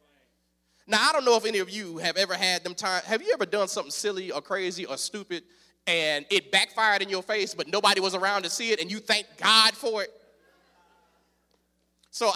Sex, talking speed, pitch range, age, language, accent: male, 210 wpm, 165-235 Hz, 30-49, English, American